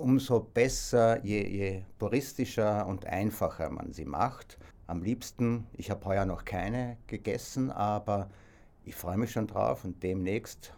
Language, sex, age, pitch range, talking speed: German, male, 60-79, 95-115 Hz, 145 wpm